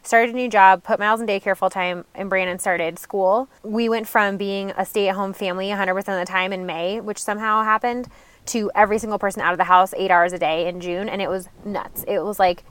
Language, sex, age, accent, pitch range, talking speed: English, female, 20-39, American, 190-225 Hz, 235 wpm